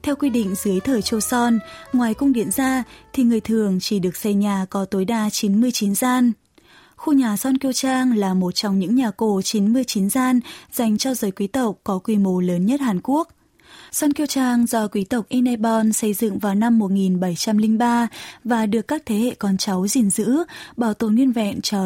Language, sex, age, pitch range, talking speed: Vietnamese, female, 20-39, 200-250 Hz, 205 wpm